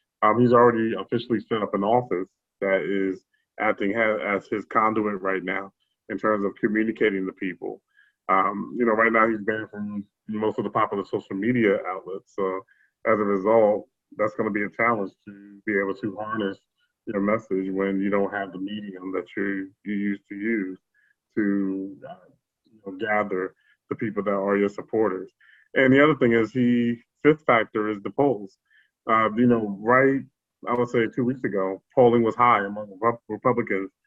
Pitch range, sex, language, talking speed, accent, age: 100-120 Hz, male, English, 180 wpm, American, 20-39